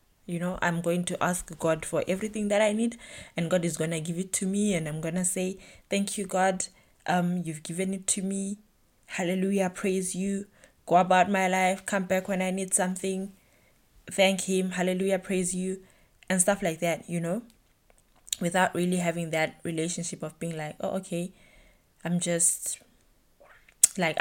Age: 20-39